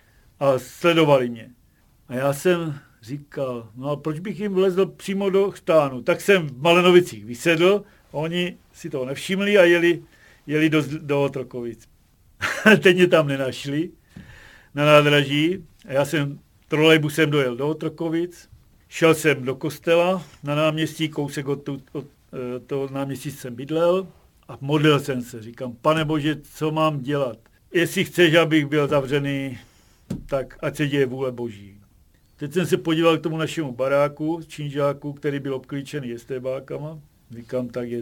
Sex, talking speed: male, 150 wpm